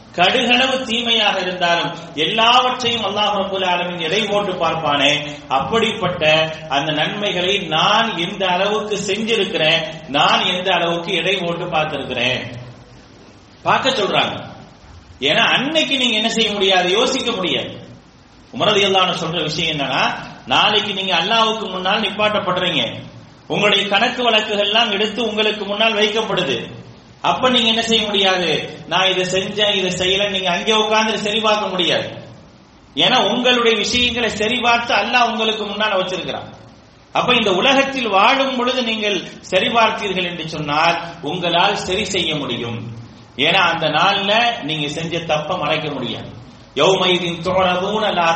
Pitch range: 165-215 Hz